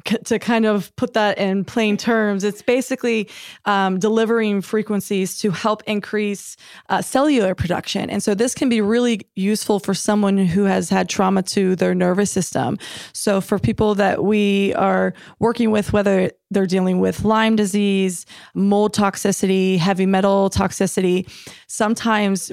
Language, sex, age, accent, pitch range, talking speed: English, female, 20-39, American, 190-215 Hz, 150 wpm